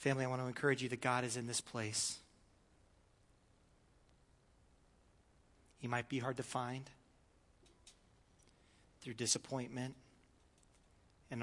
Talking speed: 110 wpm